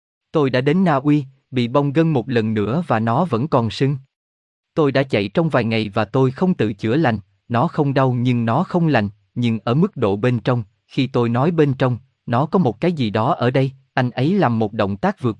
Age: 20-39